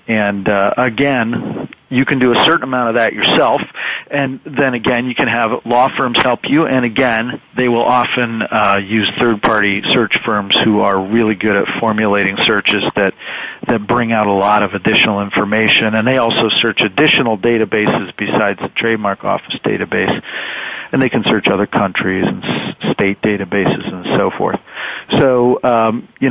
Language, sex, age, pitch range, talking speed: English, male, 40-59, 105-120 Hz, 170 wpm